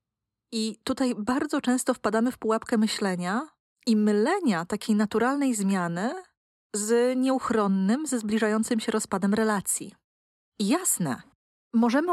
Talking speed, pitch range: 110 wpm, 205-245 Hz